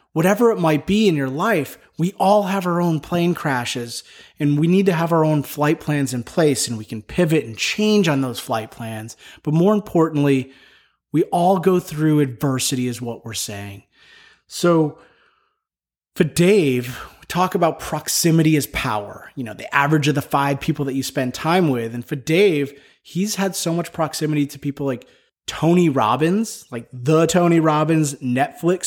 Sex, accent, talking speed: male, American, 180 wpm